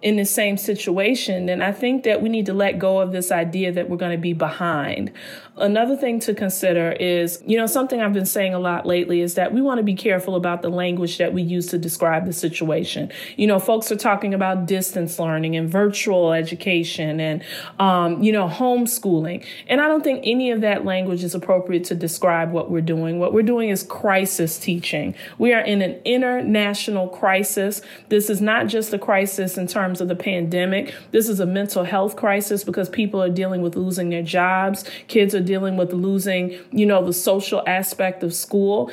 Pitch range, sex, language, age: 175-210 Hz, female, English, 30-49